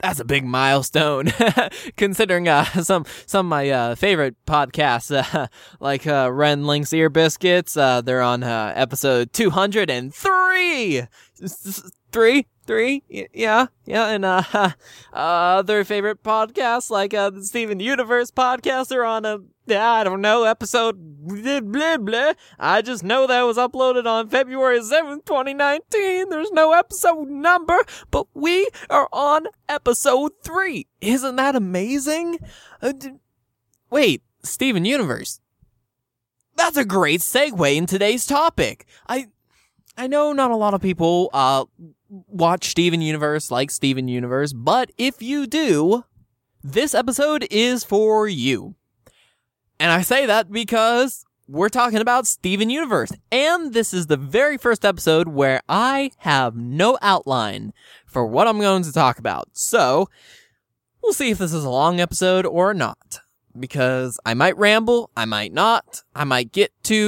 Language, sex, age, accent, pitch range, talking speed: English, male, 20-39, American, 155-255 Hz, 150 wpm